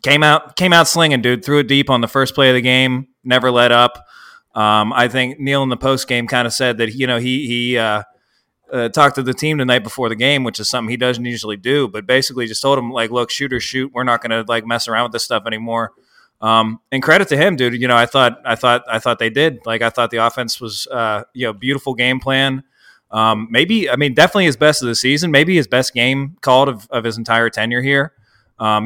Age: 20-39